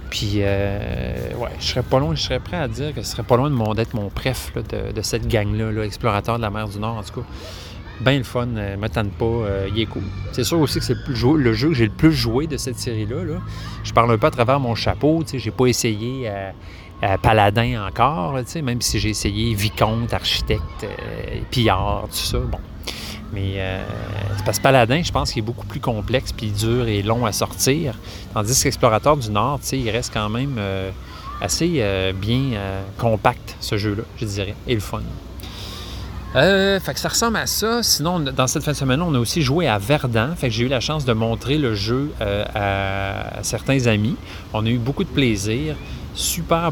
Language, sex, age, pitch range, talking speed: French, male, 30-49, 100-130 Hz, 220 wpm